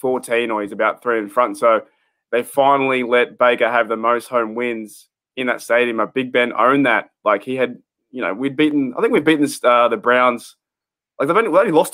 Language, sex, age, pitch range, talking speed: English, male, 20-39, 120-145 Hz, 225 wpm